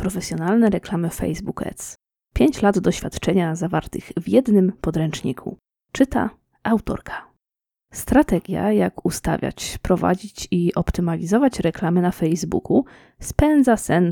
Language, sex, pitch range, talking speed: Polish, female, 170-225 Hz, 100 wpm